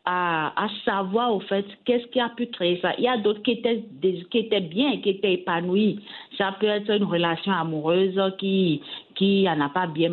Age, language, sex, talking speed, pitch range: 50-69, French, female, 215 wpm, 160-195 Hz